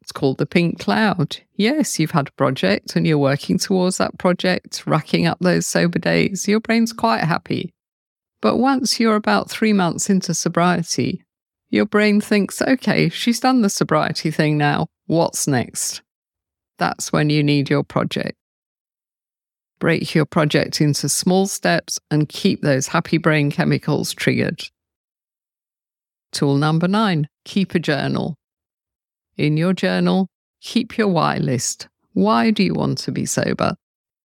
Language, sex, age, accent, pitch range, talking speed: English, female, 50-69, British, 150-195 Hz, 145 wpm